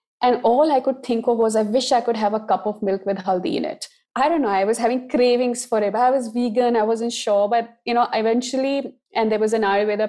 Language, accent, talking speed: English, Indian, 260 wpm